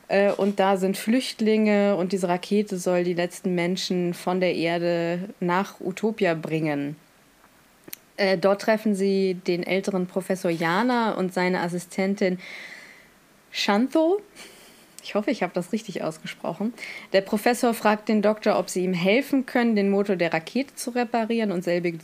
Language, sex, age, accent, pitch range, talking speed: German, female, 20-39, German, 180-220 Hz, 145 wpm